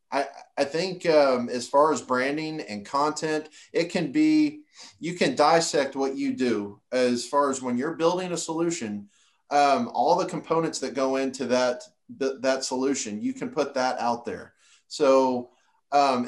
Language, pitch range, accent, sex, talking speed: English, 130-160 Hz, American, male, 165 wpm